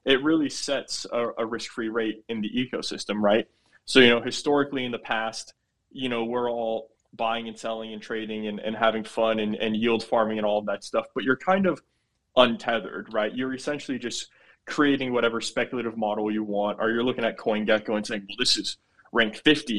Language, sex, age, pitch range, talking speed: English, male, 20-39, 110-130 Hz, 200 wpm